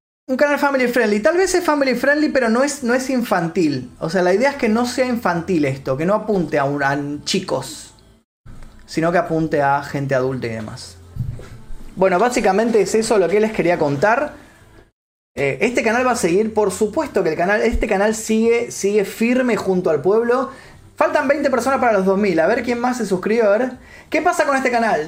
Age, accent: 20-39, Argentinian